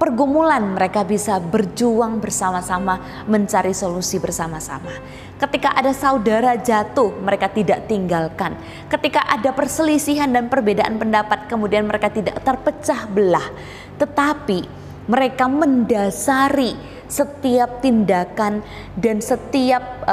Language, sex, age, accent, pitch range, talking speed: Indonesian, female, 20-39, native, 185-260 Hz, 100 wpm